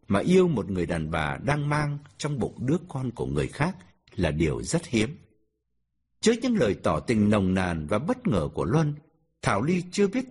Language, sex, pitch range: Vietnamese, male, 110-175 Hz